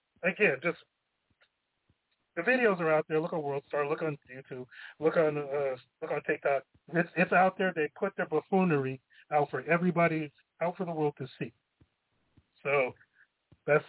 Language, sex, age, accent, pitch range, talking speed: English, male, 40-59, American, 140-190 Hz, 165 wpm